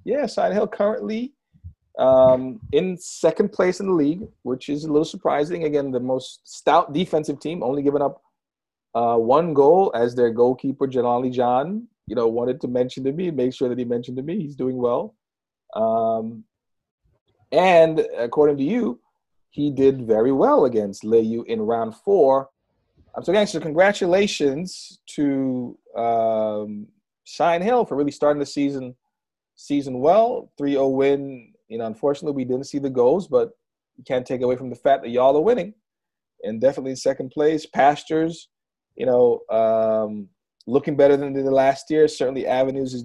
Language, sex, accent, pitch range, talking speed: English, male, American, 125-165 Hz, 165 wpm